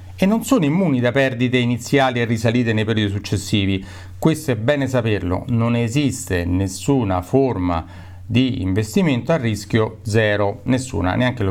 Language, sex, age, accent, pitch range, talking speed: Italian, male, 40-59, native, 100-145 Hz, 145 wpm